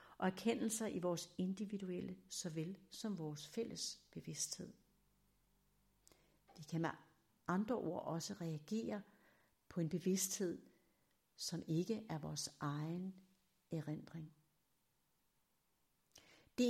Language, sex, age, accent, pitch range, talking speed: Danish, female, 60-79, native, 170-210 Hz, 95 wpm